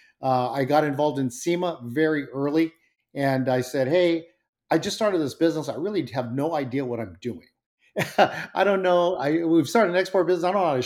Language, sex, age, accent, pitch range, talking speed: English, male, 50-69, American, 130-165 Hz, 215 wpm